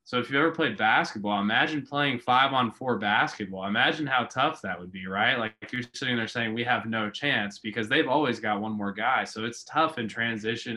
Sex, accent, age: male, American, 20-39